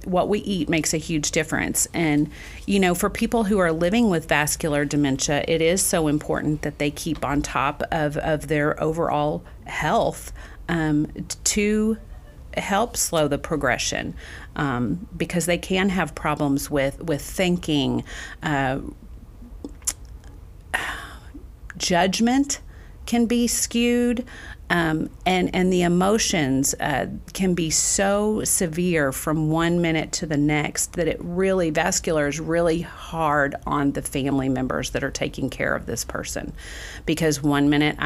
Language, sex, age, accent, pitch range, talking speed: English, female, 40-59, American, 140-175 Hz, 140 wpm